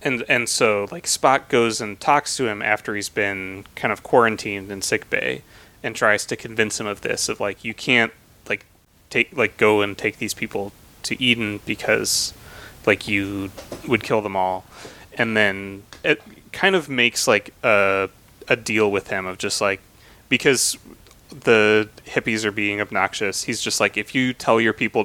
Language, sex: English, male